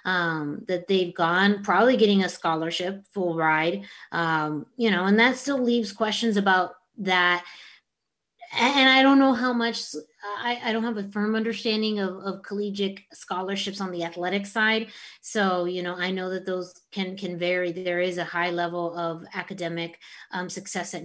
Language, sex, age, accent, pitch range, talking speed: English, female, 30-49, American, 175-215 Hz, 175 wpm